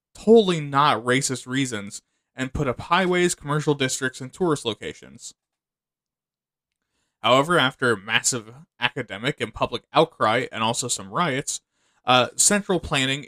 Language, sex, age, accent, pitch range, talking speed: English, male, 20-39, American, 120-150 Hz, 120 wpm